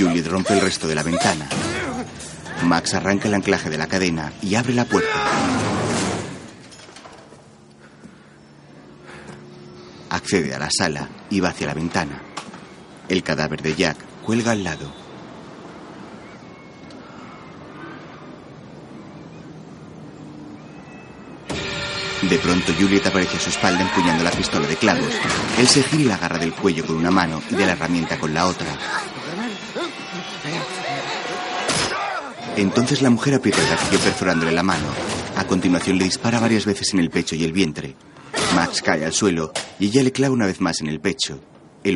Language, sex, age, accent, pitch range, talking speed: Spanish, male, 30-49, Spanish, 80-100 Hz, 145 wpm